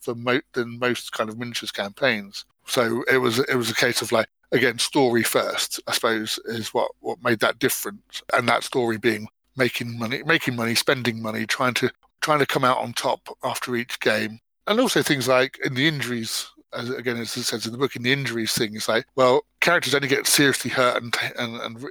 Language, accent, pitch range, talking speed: English, British, 115-130 Hz, 210 wpm